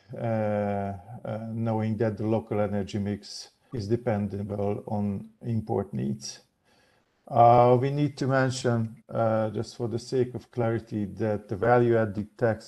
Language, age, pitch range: Hungarian, 50-69, 110-120 Hz